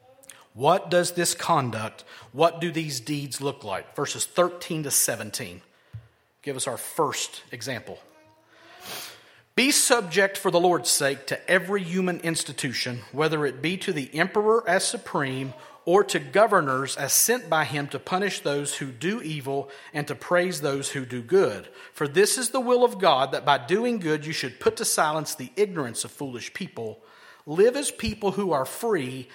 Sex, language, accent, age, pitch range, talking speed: male, English, American, 40-59, 140-195 Hz, 170 wpm